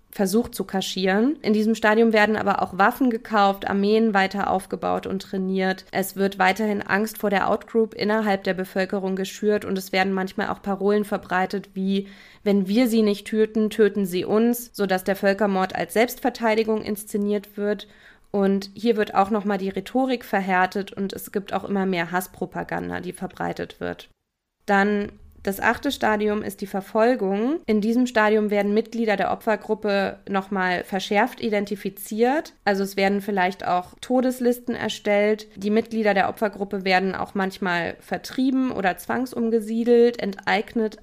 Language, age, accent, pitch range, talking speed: German, 20-39, German, 195-225 Hz, 150 wpm